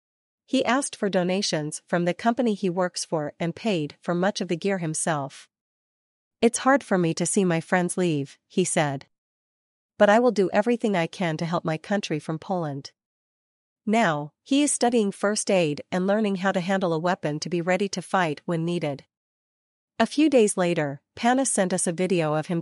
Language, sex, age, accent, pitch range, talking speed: English, female, 40-59, American, 160-205 Hz, 195 wpm